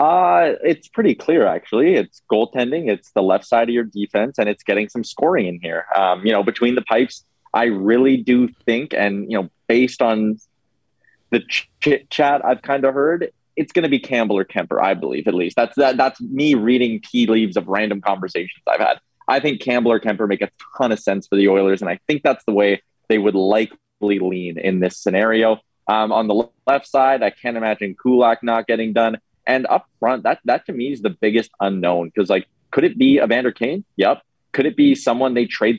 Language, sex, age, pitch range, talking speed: English, male, 20-39, 100-130 Hz, 215 wpm